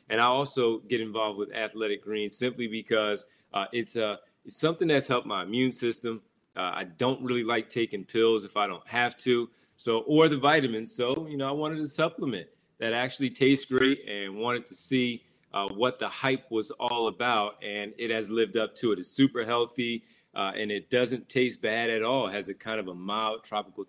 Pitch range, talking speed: 105-125 Hz, 210 wpm